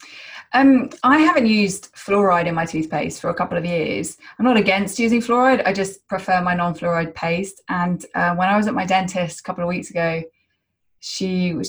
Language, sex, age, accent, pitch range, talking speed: English, female, 20-39, British, 175-235 Hz, 200 wpm